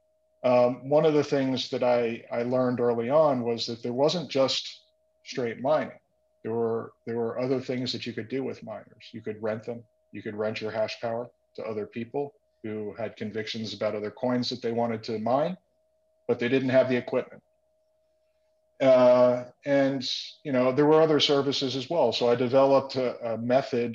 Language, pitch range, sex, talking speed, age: English, 115-135 Hz, male, 190 wpm, 40-59